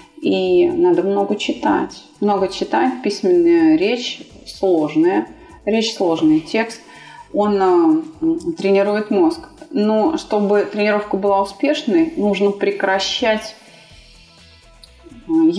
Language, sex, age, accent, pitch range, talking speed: Russian, female, 30-49, native, 195-325 Hz, 90 wpm